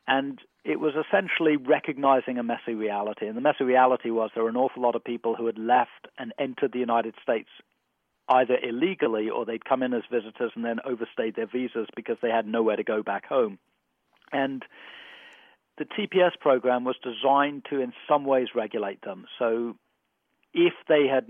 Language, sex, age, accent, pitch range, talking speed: English, male, 40-59, British, 115-135 Hz, 185 wpm